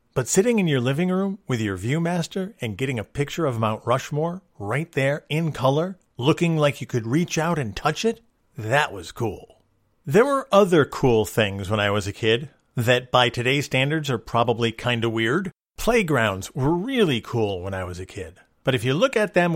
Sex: male